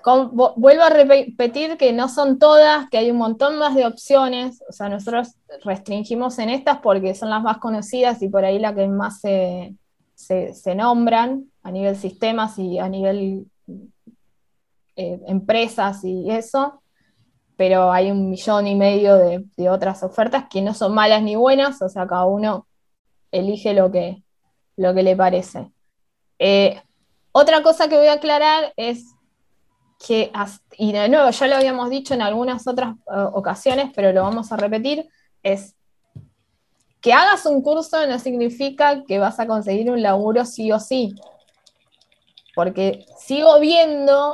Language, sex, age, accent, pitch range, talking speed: Spanish, female, 20-39, Argentinian, 200-280 Hz, 160 wpm